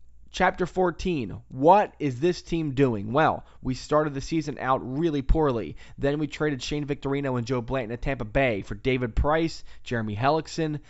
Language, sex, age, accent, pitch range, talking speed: English, male, 20-39, American, 120-155 Hz, 170 wpm